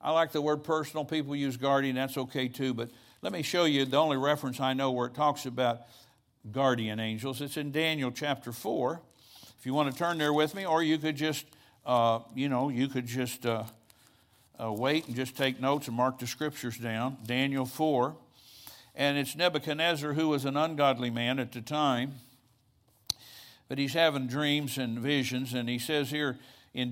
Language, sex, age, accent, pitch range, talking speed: English, male, 60-79, American, 120-145 Hz, 190 wpm